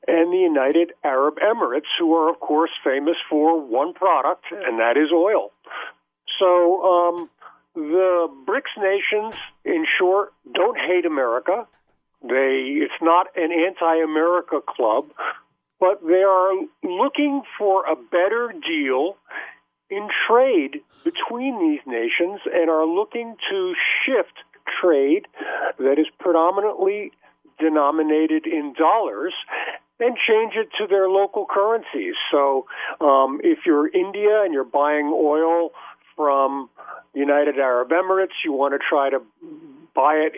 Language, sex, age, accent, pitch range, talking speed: English, male, 50-69, American, 150-235 Hz, 125 wpm